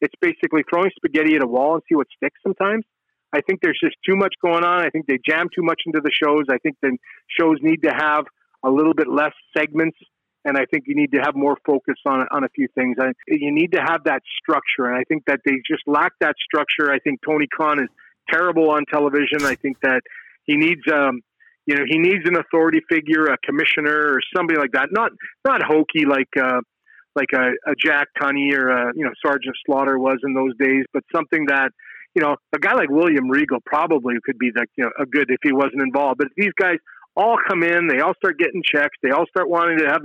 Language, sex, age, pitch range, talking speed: English, male, 40-59, 140-175 Hz, 235 wpm